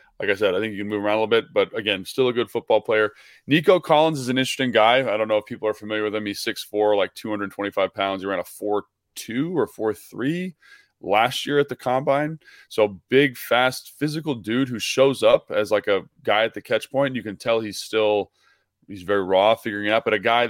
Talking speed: 235 wpm